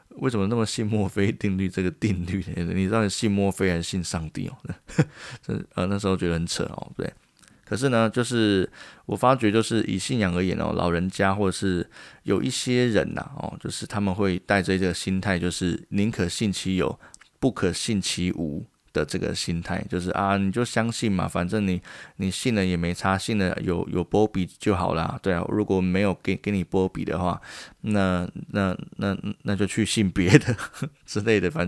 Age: 20-39